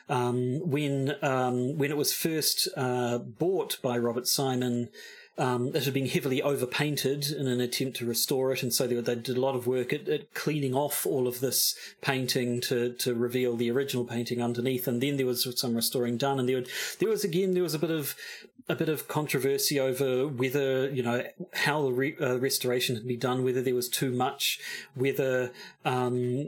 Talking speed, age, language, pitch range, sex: 200 wpm, 30-49, English, 125-145 Hz, male